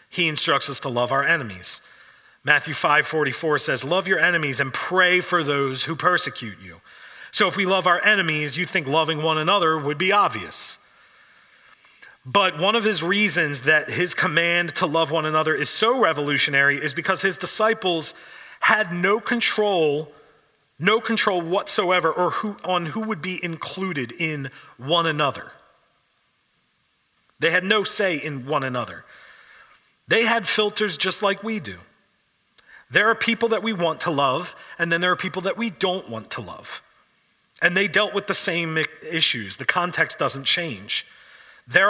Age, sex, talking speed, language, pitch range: 40-59, male, 165 wpm, English, 150-195 Hz